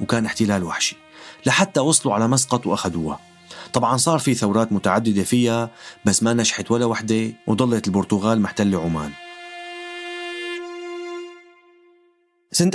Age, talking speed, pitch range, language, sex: 30-49, 115 wpm, 110-140 Hz, Arabic, male